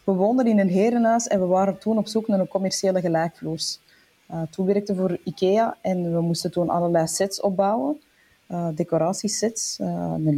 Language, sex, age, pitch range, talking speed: Dutch, female, 20-39, 165-205 Hz, 185 wpm